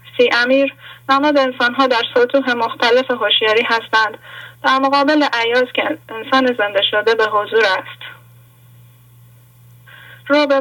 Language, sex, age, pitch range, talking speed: English, female, 10-29, 210-270 Hz, 125 wpm